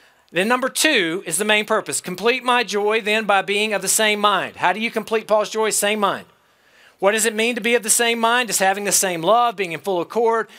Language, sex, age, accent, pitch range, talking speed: English, male, 40-59, American, 170-220 Hz, 250 wpm